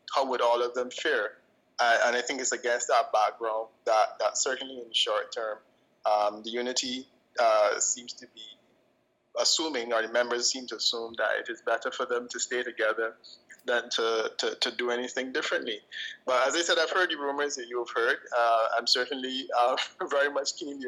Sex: male